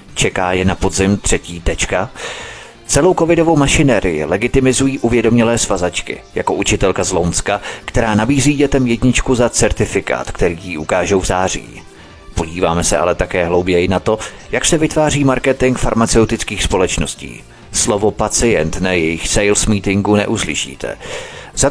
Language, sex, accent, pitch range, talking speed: Czech, male, native, 100-120 Hz, 135 wpm